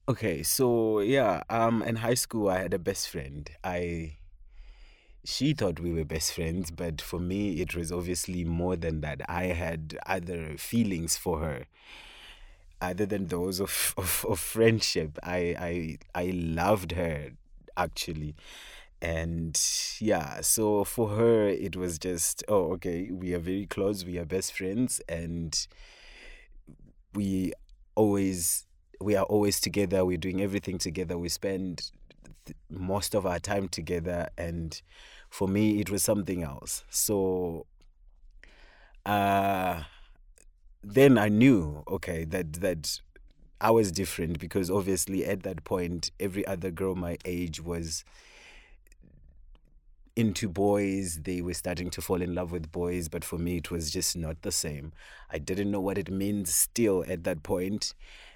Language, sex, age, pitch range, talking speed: English, male, 30-49, 85-100 Hz, 145 wpm